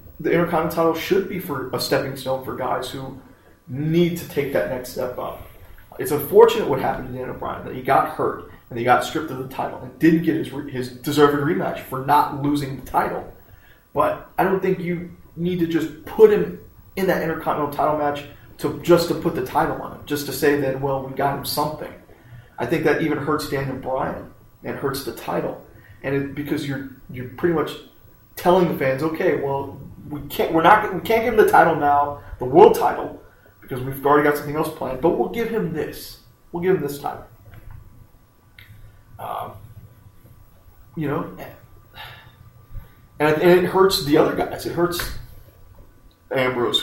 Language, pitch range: English, 120-160 Hz